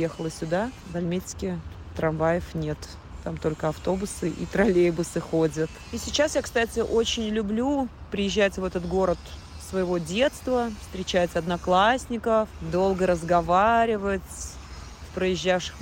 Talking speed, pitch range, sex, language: 115 wpm, 165-200 Hz, female, Russian